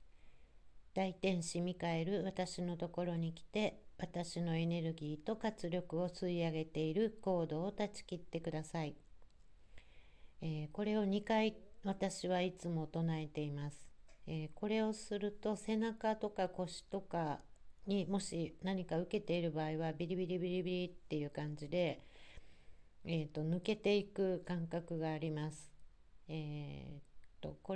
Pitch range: 150-185 Hz